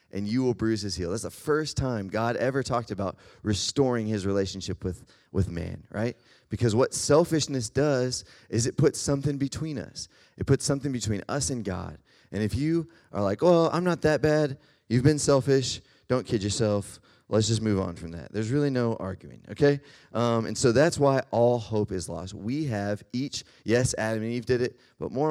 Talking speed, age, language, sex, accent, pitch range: 205 wpm, 30-49, English, male, American, 95-135 Hz